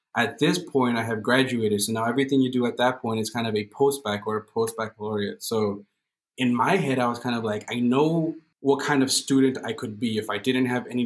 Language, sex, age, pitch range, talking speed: English, male, 20-39, 110-130 Hz, 245 wpm